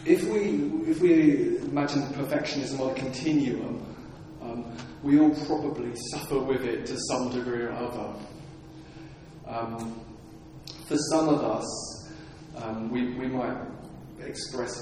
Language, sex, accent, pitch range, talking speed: English, male, British, 125-145 Hz, 125 wpm